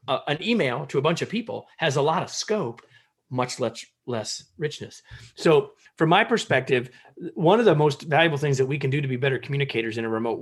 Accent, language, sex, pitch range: American, English, male, 120-180 Hz